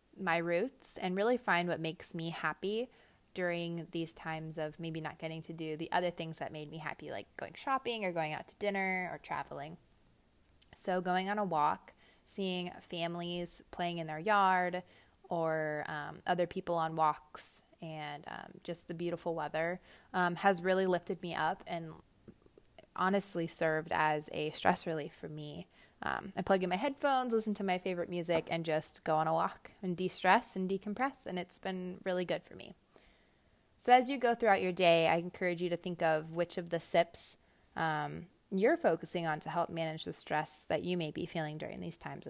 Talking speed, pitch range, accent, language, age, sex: 190 wpm, 165-190 Hz, American, English, 20-39, female